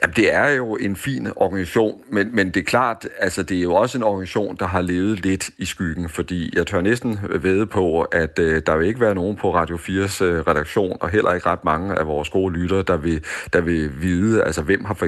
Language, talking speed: Danish, 235 wpm